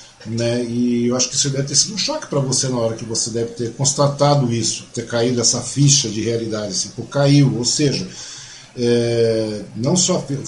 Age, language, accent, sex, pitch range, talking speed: 40-59, Portuguese, Brazilian, male, 120-180 Hz, 200 wpm